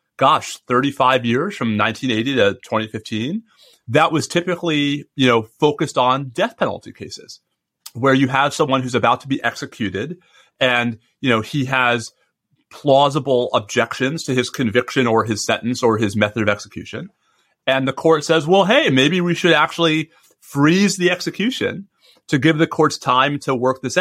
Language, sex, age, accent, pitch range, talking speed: English, male, 30-49, American, 120-160 Hz, 160 wpm